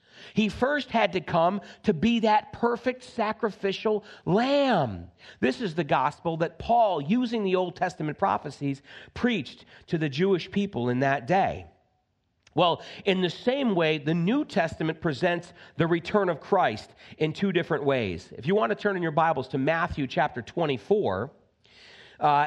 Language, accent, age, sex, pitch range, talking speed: English, American, 40-59, male, 140-195 Hz, 160 wpm